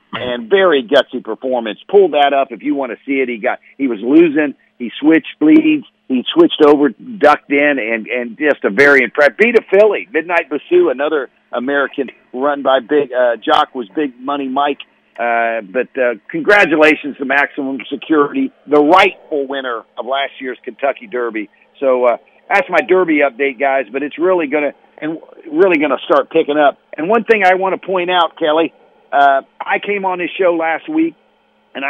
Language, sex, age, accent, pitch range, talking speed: English, male, 50-69, American, 135-180 Hz, 190 wpm